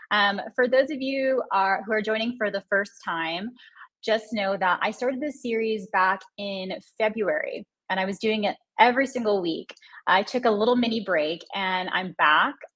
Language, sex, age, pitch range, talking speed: English, female, 20-39, 190-240 Hz, 190 wpm